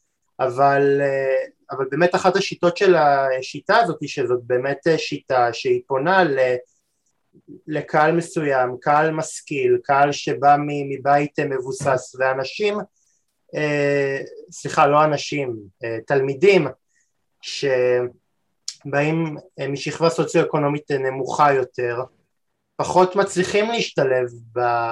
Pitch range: 135-170 Hz